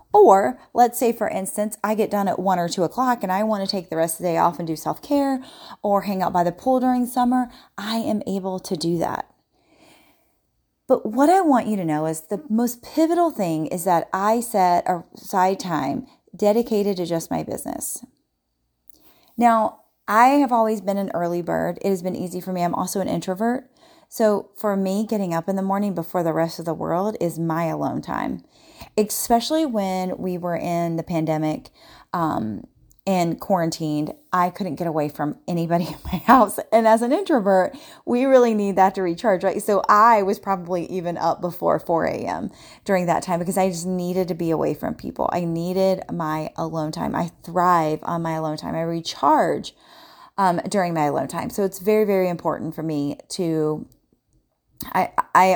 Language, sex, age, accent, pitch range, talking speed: English, female, 30-49, American, 170-220 Hz, 190 wpm